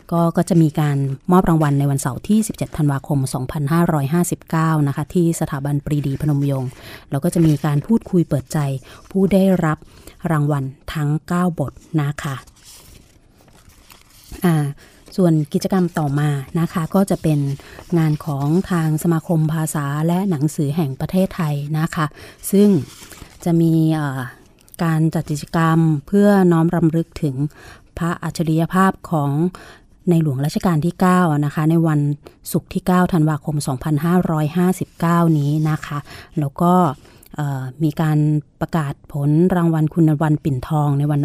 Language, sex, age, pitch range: Thai, female, 20-39, 145-170 Hz